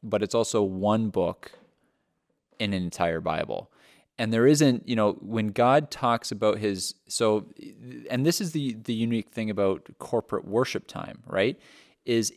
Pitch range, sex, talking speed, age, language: 105-130 Hz, male, 160 wpm, 30-49, English